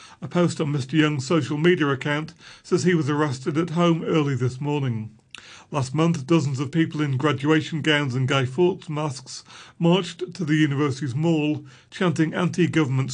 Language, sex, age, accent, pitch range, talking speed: English, male, 40-59, British, 135-165 Hz, 165 wpm